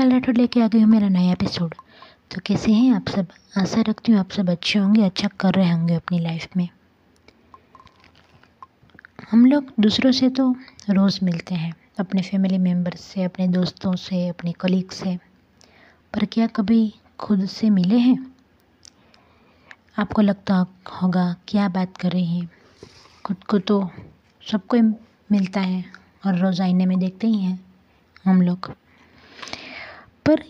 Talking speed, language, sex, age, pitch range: 150 wpm, Hindi, female, 20-39, 185-225 Hz